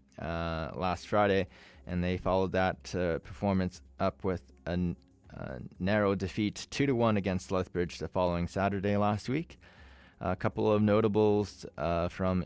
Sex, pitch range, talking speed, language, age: male, 85-105 Hz, 155 wpm, English, 20-39